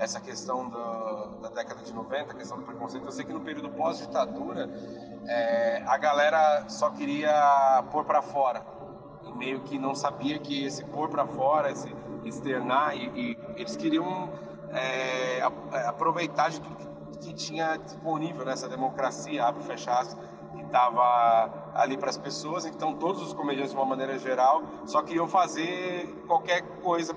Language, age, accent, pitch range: Portuguese, 30-49, Brazilian, 140-195 Hz